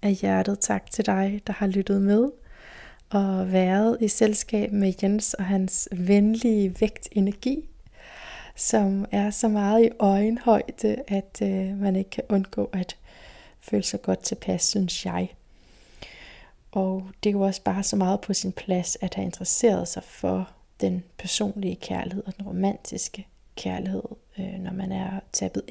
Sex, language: female, Danish